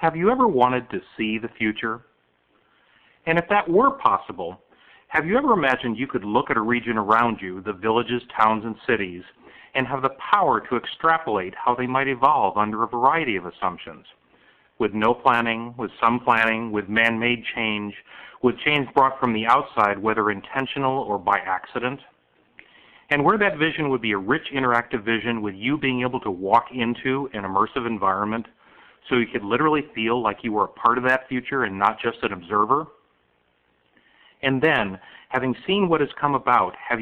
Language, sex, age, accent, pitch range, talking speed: English, male, 40-59, American, 110-135 Hz, 180 wpm